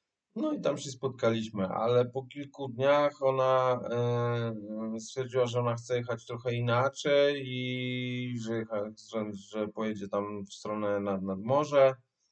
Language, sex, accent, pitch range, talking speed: Polish, male, native, 110-130 Hz, 145 wpm